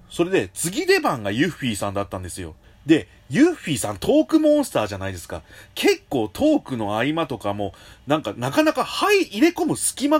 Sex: male